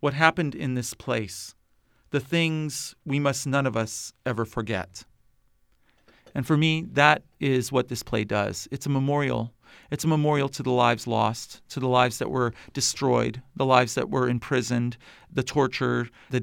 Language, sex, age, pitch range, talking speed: English, male, 40-59, 115-145 Hz, 170 wpm